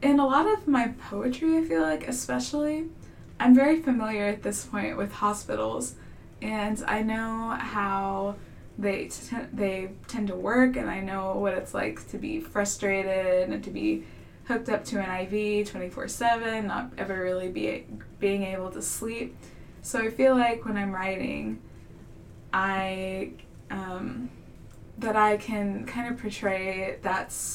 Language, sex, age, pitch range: English, female, 20-39, 190-225 Hz